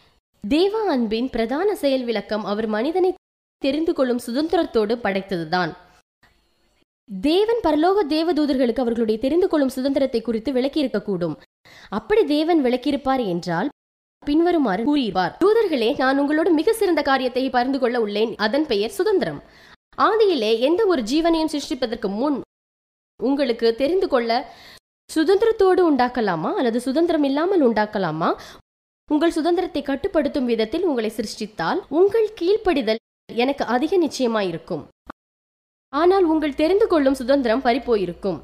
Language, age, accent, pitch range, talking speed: Tamil, 20-39, native, 235-335 Hz, 65 wpm